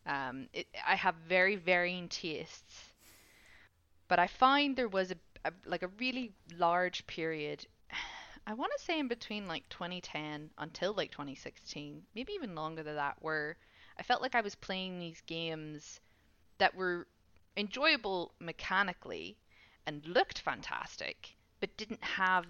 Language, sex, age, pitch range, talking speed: English, female, 20-39, 150-185 Hz, 150 wpm